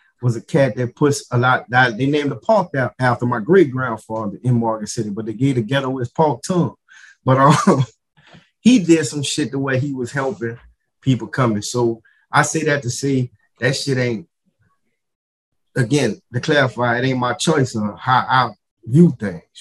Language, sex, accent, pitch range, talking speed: English, male, American, 110-140 Hz, 185 wpm